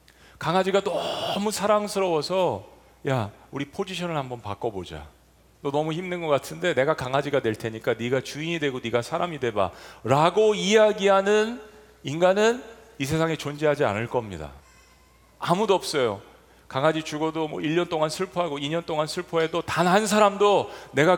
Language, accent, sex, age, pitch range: Korean, native, male, 40-59, 140-195 Hz